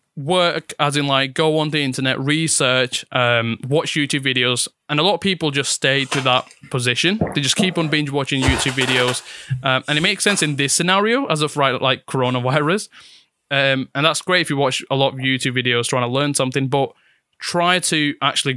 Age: 20-39